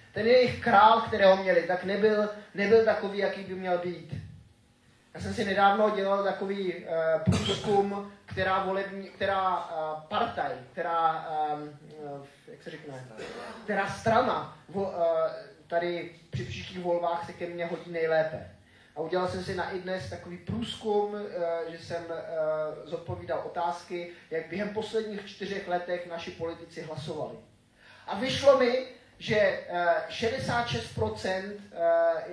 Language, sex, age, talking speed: Czech, male, 20-39, 135 wpm